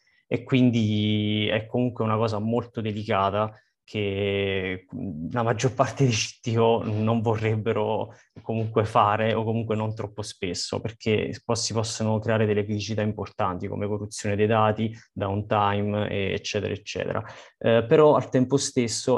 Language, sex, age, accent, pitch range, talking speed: Italian, male, 20-39, native, 105-115 Hz, 130 wpm